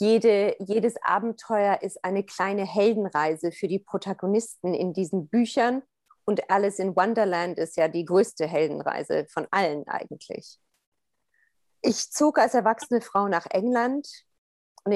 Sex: female